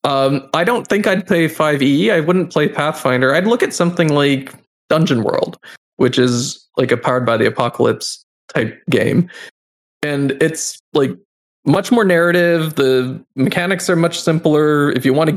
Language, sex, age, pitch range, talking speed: English, male, 20-39, 130-160 Hz, 170 wpm